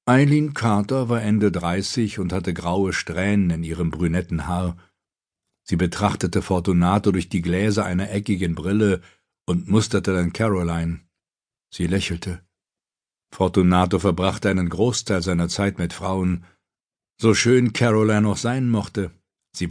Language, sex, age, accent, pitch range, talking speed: German, male, 60-79, German, 90-110 Hz, 130 wpm